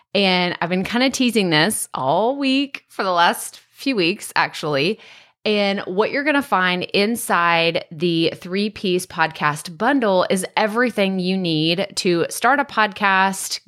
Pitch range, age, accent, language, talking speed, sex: 165-210 Hz, 20-39, American, English, 145 wpm, female